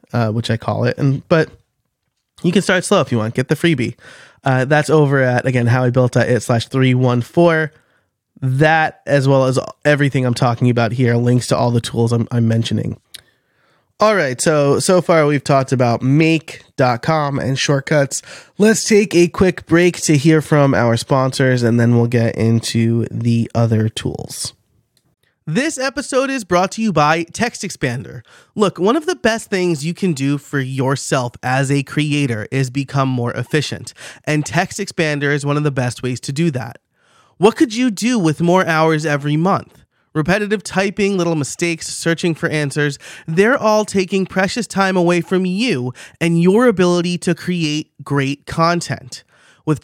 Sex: male